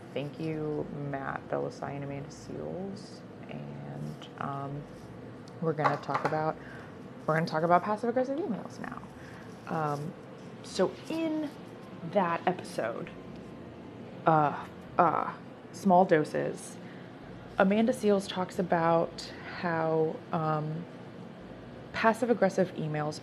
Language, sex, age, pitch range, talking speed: English, female, 20-39, 150-180 Hz, 95 wpm